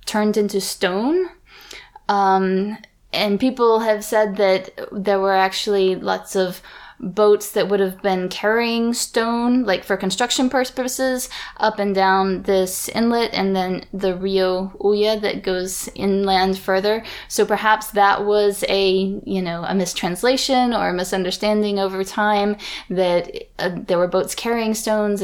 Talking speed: 145 wpm